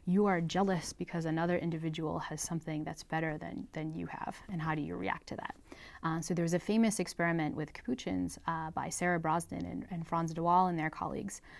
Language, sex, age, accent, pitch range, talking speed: English, female, 20-39, American, 155-180 Hz, 215 wpm